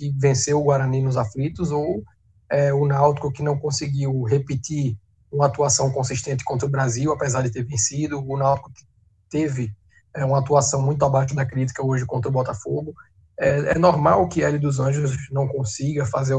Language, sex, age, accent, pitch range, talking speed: Portuguese, male, 20-39, Brazilian, 130-155 Hz, 185 wpm